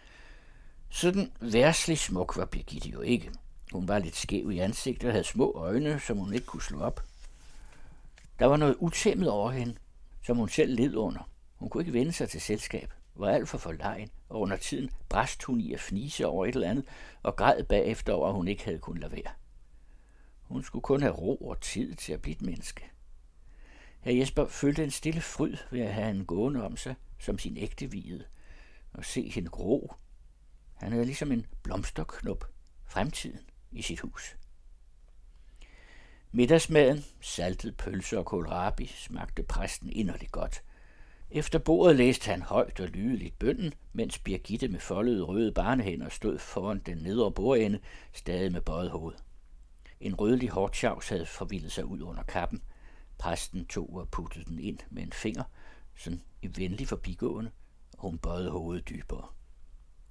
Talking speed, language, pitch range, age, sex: 165 wpm, Danish, 80-125 Hz, 60-79, male